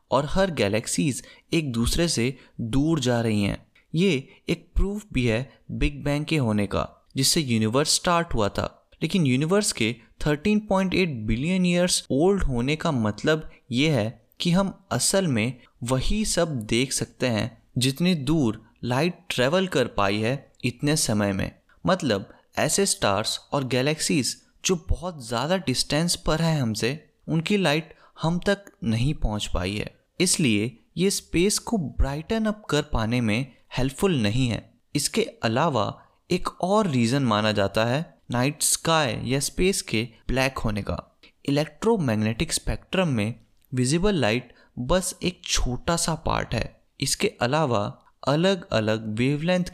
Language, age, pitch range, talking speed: Hindi, 20-39, 115-170 Hz, 145 wpm